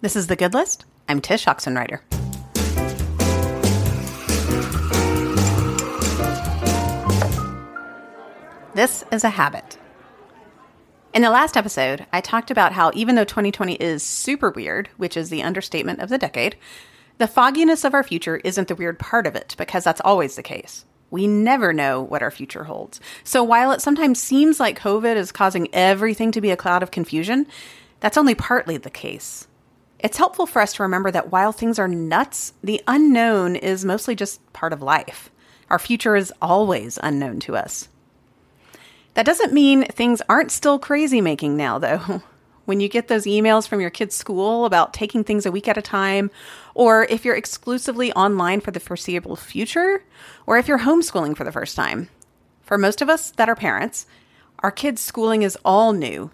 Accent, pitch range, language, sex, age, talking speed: American, 165-235 Hz, English, female, 30-49, 170 wpm